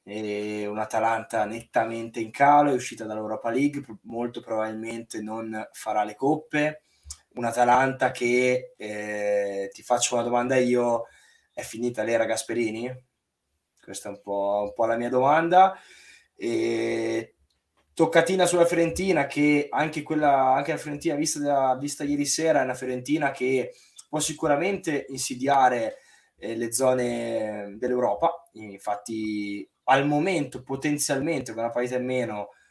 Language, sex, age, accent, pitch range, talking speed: Italian, male, 20-39, native, 110-145 Hz, 130 wpm